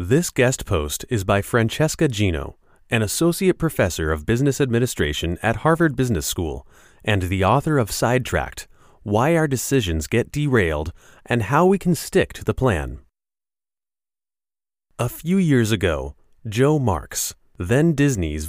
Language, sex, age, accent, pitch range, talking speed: English, male, 30-49, American, 95-145 Hz, 140 wpm